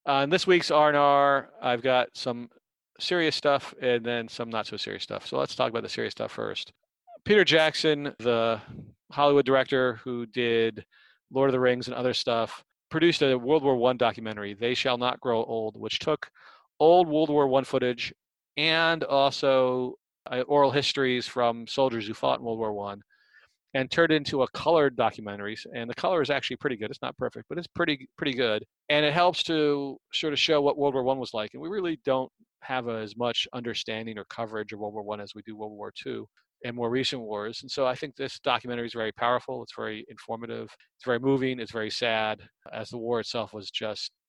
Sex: male